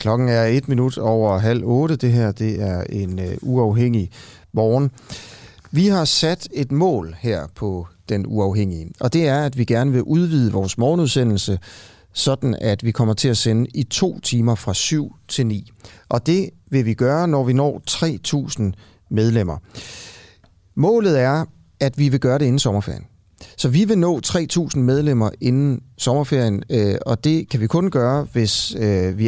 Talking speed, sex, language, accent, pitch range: 170 wpm, male, Danish, native, 100-140 Hz